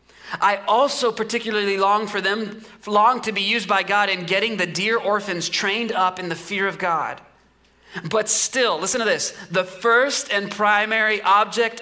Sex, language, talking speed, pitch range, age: male, English, 175 wpm, 150-210 Hz, 30-49